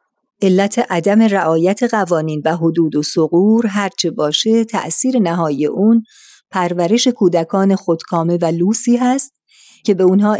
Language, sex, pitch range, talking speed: Persian, female, 175-220 Hz, 125 wpm